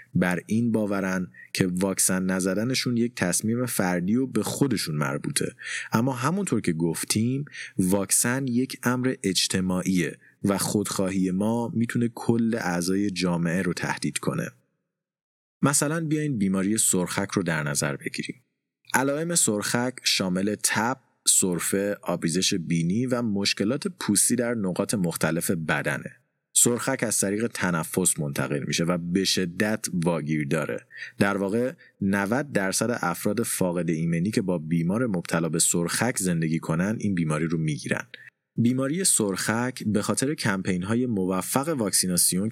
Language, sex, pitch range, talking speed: Persian, male, 90-120 Hz, 130 wpm